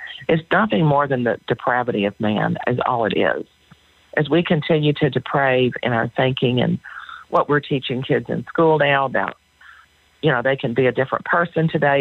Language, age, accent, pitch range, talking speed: English, 50-69, American, 130-170 Hz, 190 wpm